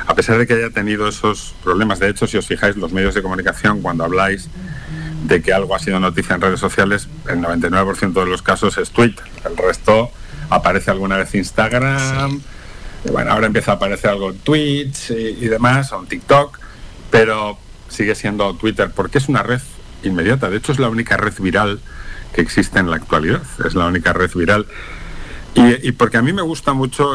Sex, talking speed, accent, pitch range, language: male, 200 wpm, Spanish, 95-125 Hz, Spanish